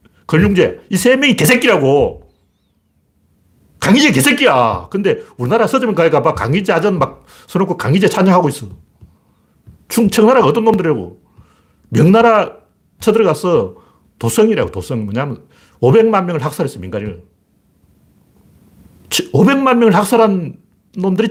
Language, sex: Korean, male